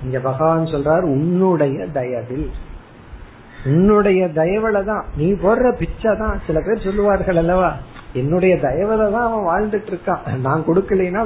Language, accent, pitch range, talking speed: Tamil, native, 150-205 Hz, 115 wpm